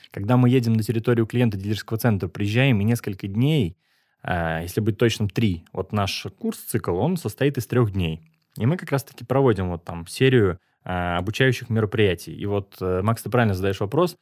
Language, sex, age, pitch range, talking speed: Russian, male, 20-39, 100-130 Hz, 180 wpm